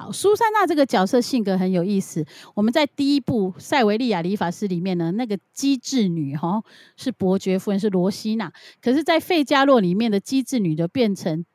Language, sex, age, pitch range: Chinese, female, 30-49, 185-250 Hz